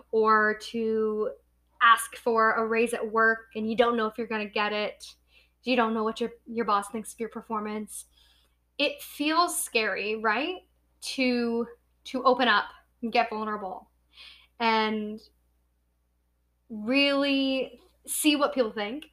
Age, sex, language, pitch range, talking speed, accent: 10-29, female, English, 210-280 Hz, 140 wpm, American